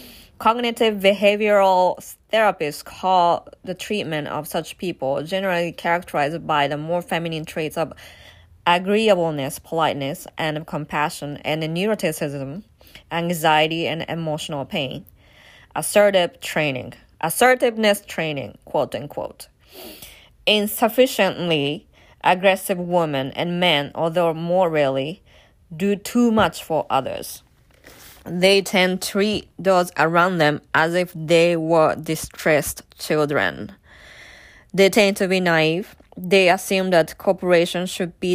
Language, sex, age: Japanese, female, 20-39